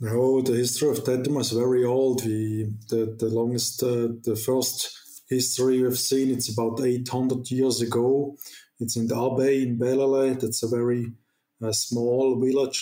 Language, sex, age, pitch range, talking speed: English, male, 20-39, 120-130 Hz, 170 wpm